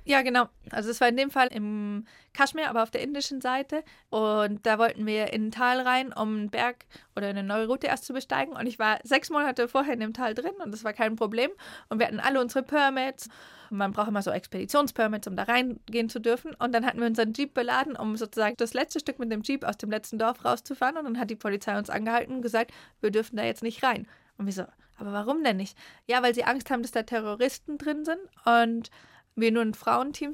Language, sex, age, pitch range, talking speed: German, female, 30-49, 215-265 Hz, 240 wpm